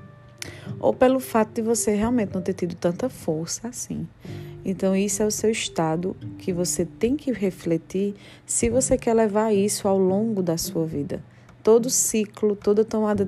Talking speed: 165 wpm